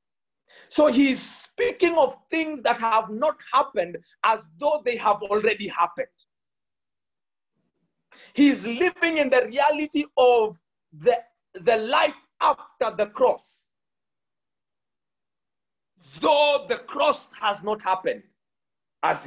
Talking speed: 105 wpm